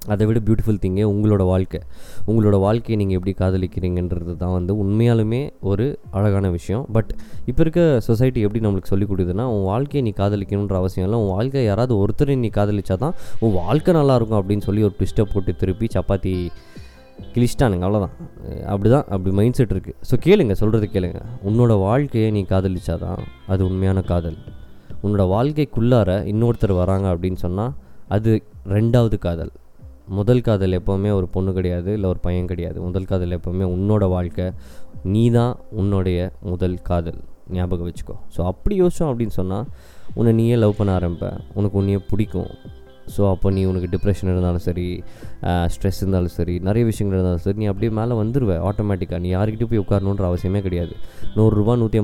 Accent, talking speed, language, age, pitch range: native, 160 wpm, Tamil, 20-39, 90-110 Hz